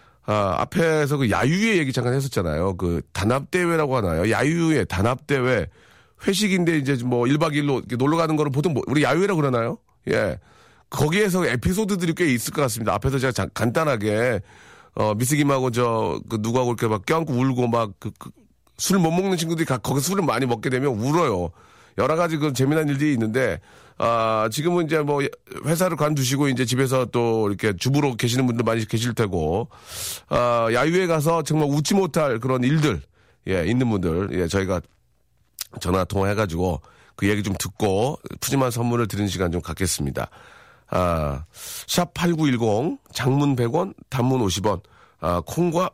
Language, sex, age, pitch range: Korean, male, 40-59, 110-155 Hz